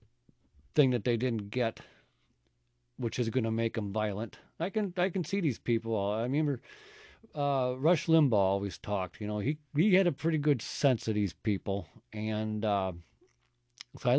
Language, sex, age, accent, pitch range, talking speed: English, male, 50-69, American, 95-135 Hz, 180 wpm